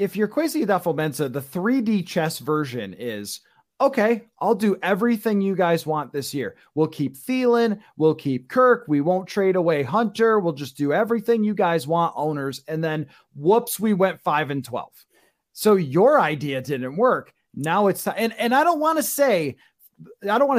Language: English